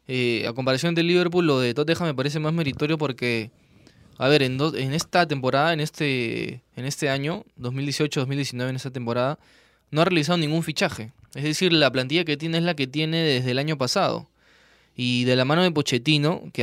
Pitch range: 130-165 Hz